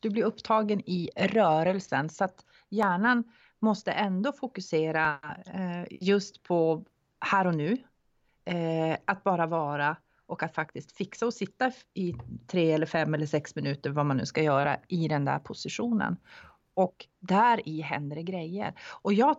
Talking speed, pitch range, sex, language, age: 150 wpm, 165-225 Hz, female, Swedish, 30-49